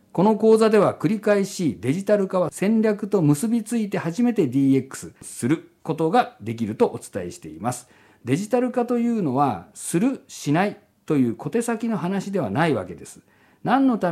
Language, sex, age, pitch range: Japanese, male, 50-69, 140-215 Hz